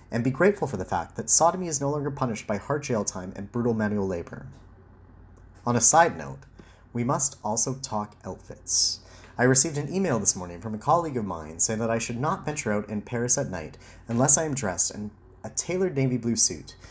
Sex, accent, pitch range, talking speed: male, American, 95-135 Hz, 215 wpm